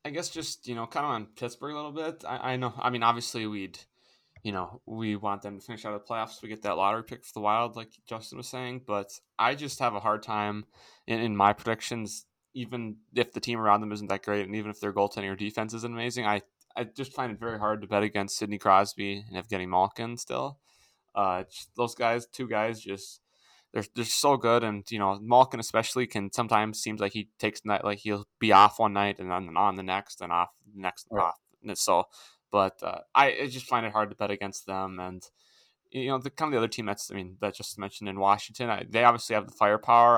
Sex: male